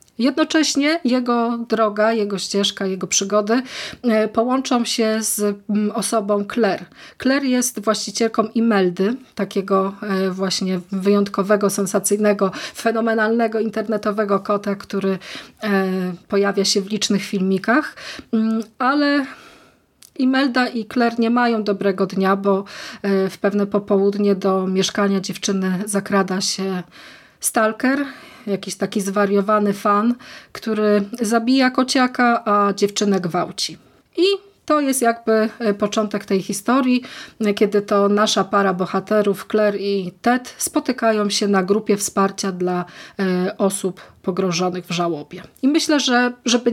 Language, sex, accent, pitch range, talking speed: Polish, female, native, 195-230 Hz, 110 wpm